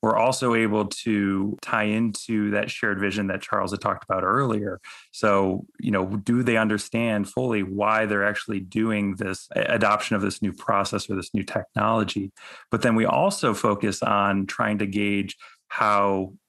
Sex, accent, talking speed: male, American, 165 wpm